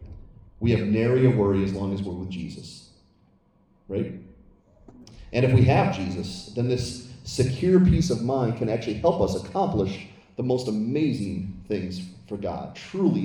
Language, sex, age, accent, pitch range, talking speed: English, male, 30-49, American, 100-135 Hz, 160 wpm